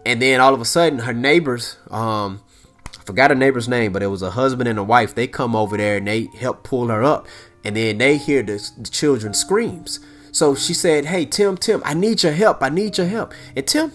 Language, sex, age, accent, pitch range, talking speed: English, male, 30-49, American, 110-180 Hz, 235 wpm